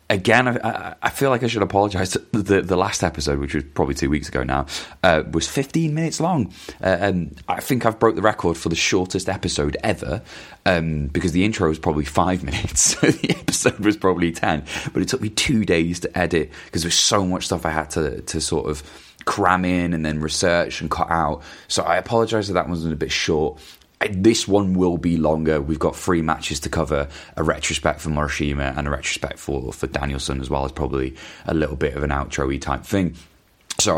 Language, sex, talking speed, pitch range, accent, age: English, male, 215 wpm, 70-95 Hz, British, 20-39